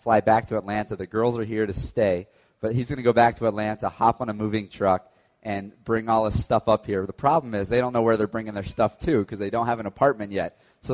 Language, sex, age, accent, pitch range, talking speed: English, male, 30-49, American, 100-115 Hz, 275 wpm